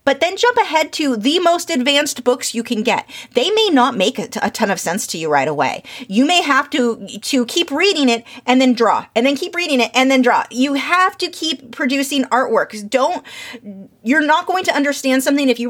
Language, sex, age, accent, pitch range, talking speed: English, female, 30-49, American, 225-285 Hz, 220 wpm